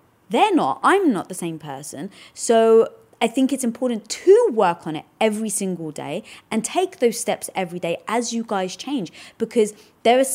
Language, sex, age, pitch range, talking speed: English, female, 20-39, 175-230 Hz, 185 wpm